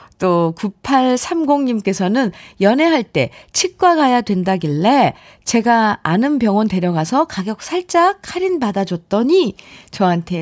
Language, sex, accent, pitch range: Korean, female, native, 175-280 Hz